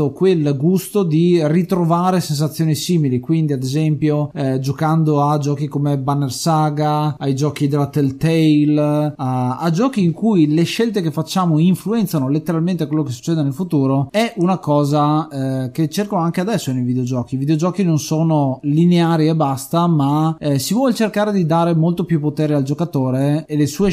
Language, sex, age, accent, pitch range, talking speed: Italian, male, 20-39, native, 140-170 Hz, 170 wpm